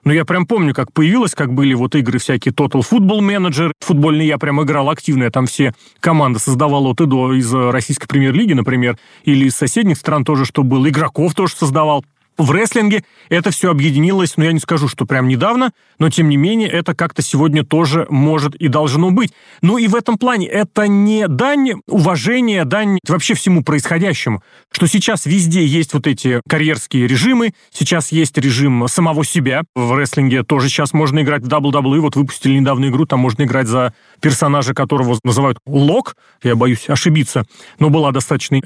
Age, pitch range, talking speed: 30-49, 140-190 Hz, 180 wpm